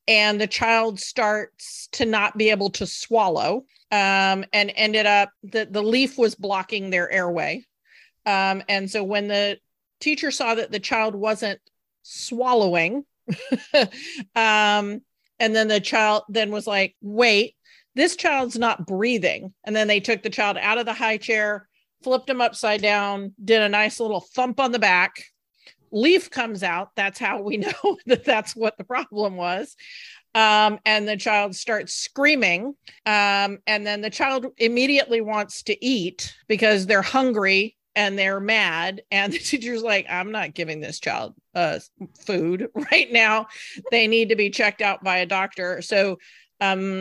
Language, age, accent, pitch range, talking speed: English, 40-59, American, 195-230 Hz, 160 wpm